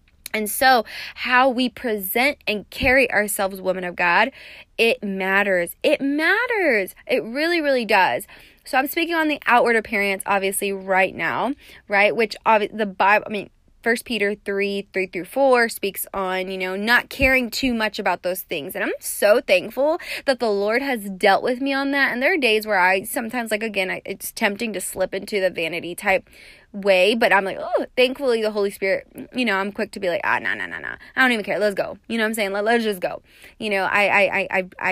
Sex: female